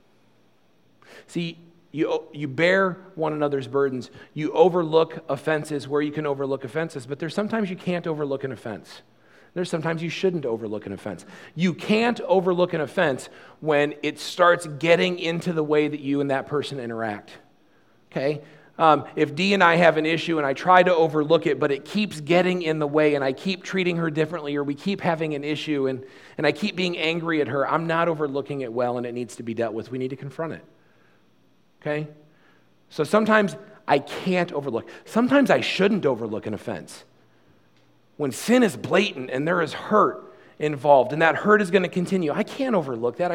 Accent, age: American, 40-59